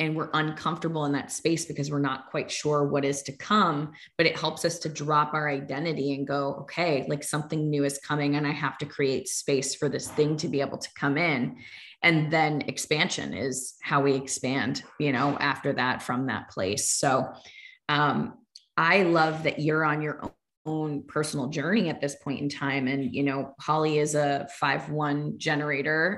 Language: English